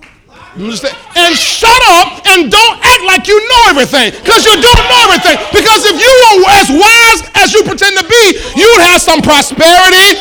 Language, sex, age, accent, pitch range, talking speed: English, male, 40-59, American, 340-425 Hz, 180 wpm